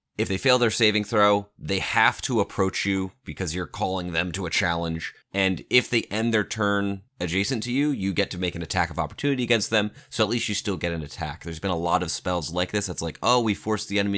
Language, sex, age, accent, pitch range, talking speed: English, male, 20-39, American, 85-110 Hz, 255 wpm